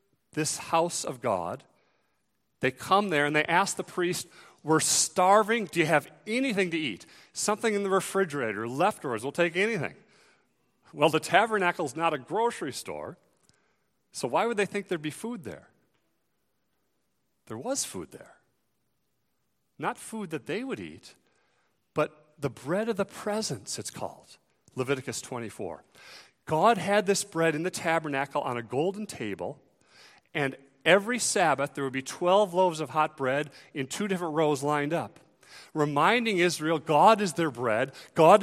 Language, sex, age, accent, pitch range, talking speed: English, male, 40-59, American, 150-200 Hz, 155 wpm